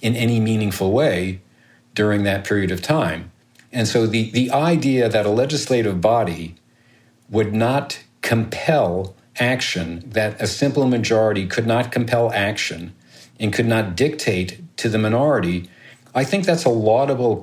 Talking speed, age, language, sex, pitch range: 145 wpm, 50-69, English, male, 100-130 Hz